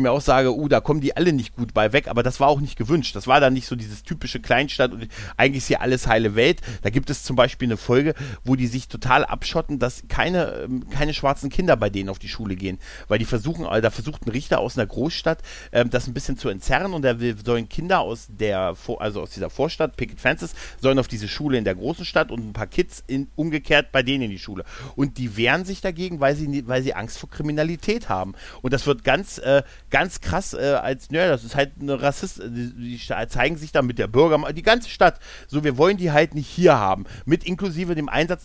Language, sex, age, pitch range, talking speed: German, male, 40-59, 120-150 Hz, 240 wpm